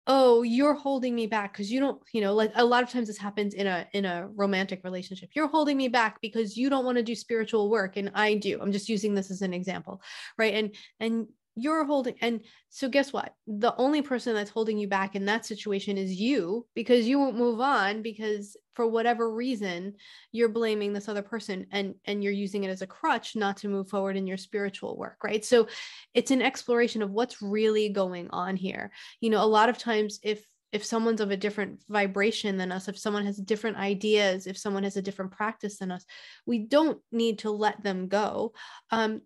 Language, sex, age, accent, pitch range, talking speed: English, female, 20-39, American, 200-230 Hz, 220 wpm